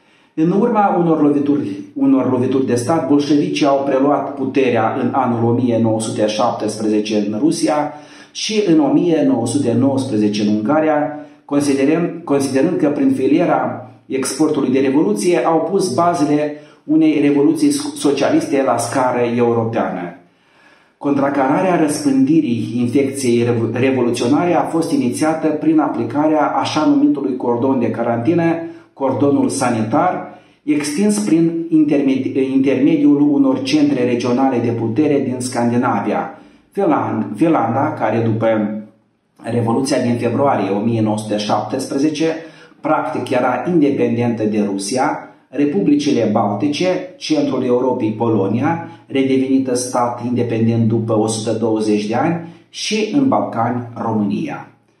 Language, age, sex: Romanian, 30-49, male